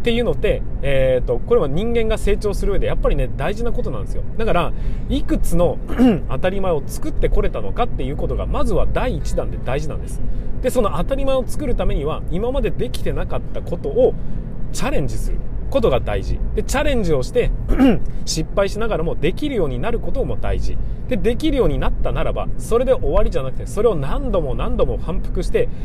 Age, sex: 30-49, male